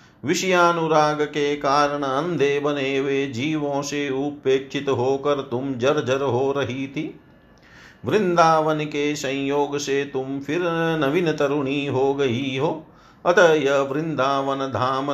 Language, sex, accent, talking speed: Hindi, male, native, 120 wpm